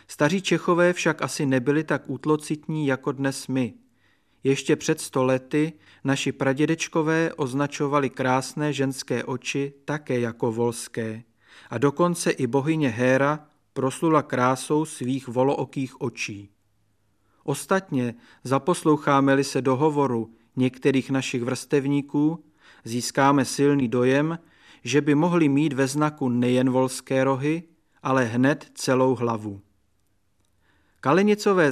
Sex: male